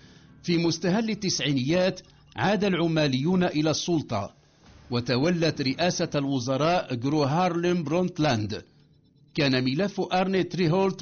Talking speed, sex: 95 wpm, male